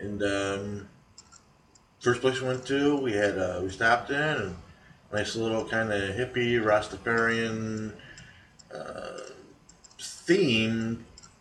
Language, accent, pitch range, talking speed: English, American, 95-115 Hz, 115 wpm